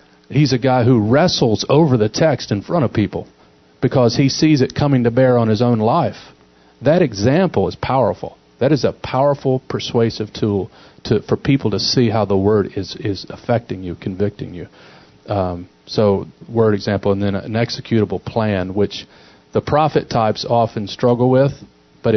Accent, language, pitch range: American, English, 95-125 Hz